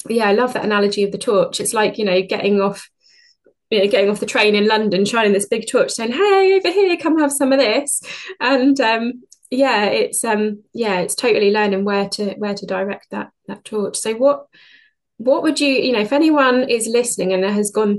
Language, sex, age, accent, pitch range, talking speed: English, female, 20-39, British, 190-230 Hz, 220 wpm